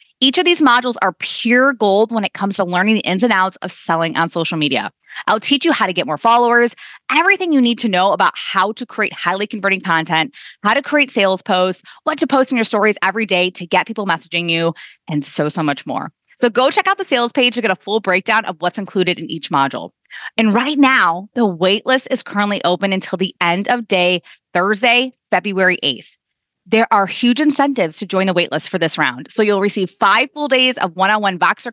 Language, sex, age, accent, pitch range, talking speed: English, female, 20-39, American, 185-250 Hz, 225 wpm